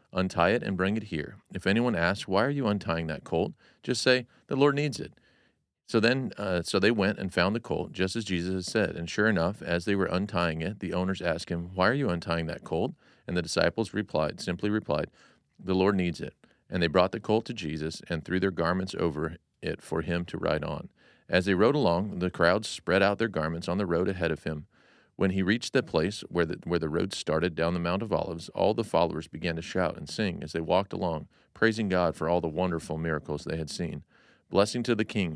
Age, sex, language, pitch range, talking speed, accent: 40-59, male, English, 85-105 Hz, 235 wpm, American